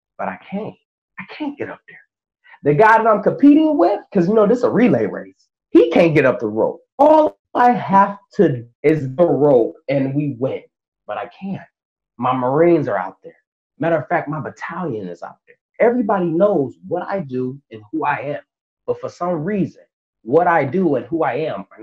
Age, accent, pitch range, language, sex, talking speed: 30-49, American, 135-205 Hz, English, male, 205 wpm